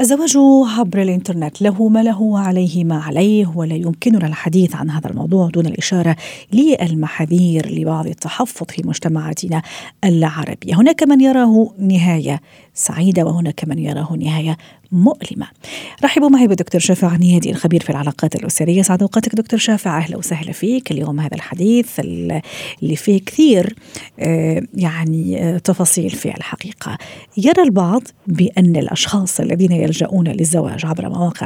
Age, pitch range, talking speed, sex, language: 40-59, 165-225 Hz, 130 wpm, female, Arabic